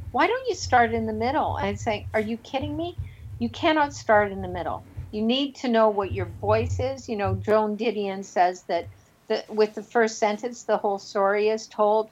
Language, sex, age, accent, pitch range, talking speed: English, female, 50-69, American, 200-230 Hz, 220 wpm